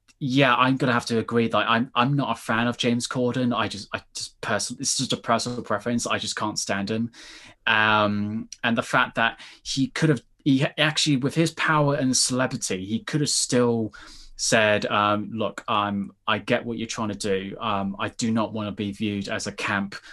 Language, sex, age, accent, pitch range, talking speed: English, male, 20-39, British, 105-120 Hz, 210 wpm